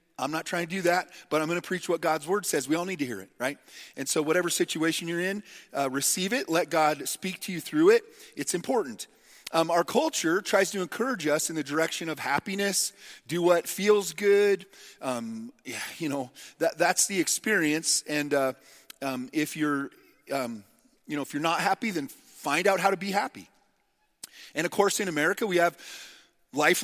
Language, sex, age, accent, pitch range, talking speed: English, male, 40-59, American, 155-220 Hz, 205 wpm